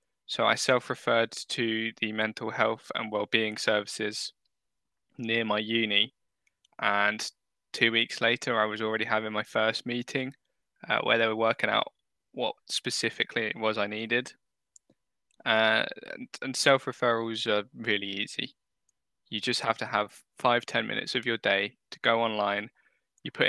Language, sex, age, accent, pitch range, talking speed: English, male, 10-29, British, 105-120 Hz, 150 wpm